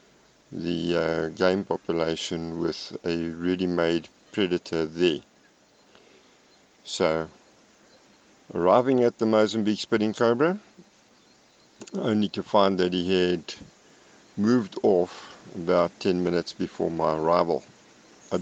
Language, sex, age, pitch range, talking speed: English, male, 50-69, 85-100 Hz, 100 wpm